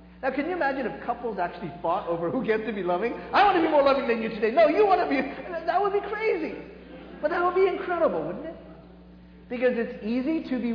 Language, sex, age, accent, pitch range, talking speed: English, male, 40-59, American, 150-245 Hz, 245 wpm